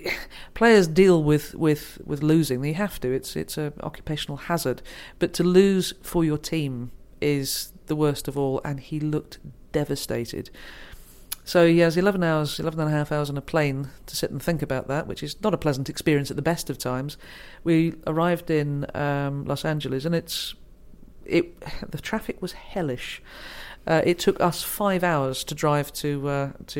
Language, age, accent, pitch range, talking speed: English, 40-59, British, 145-170 Hz, 185 wpm